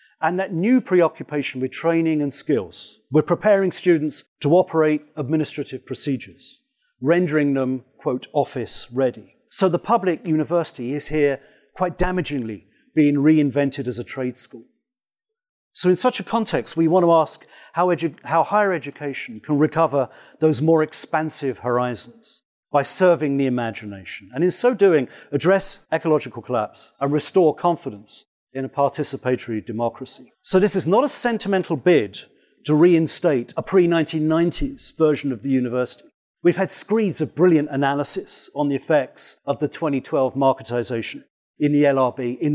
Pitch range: 130-175 Hz